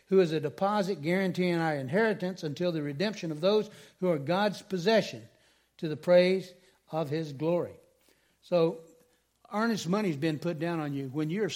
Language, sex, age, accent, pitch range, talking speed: English, male, 60-79, American, 155-195 Hz, 170 wpm